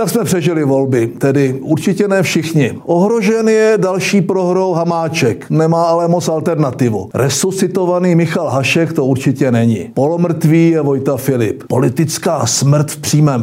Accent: native